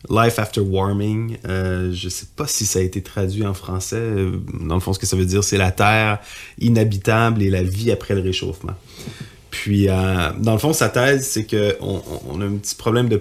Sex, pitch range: male, 95-110 Hz